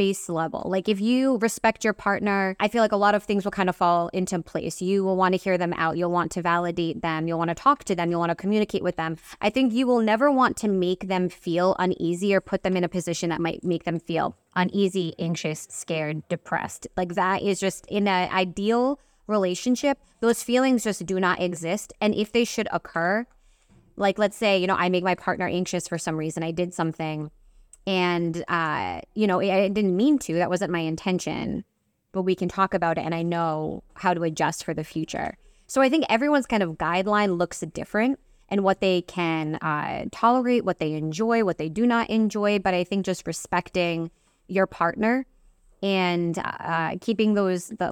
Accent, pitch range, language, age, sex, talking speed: American, 170-210 Hz, English, 20-39, female, 210 wpm